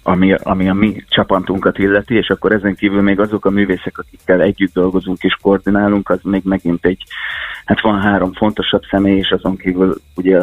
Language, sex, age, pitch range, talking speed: Hungarian, male, 30-49, 95-105 Hz, 185 wpm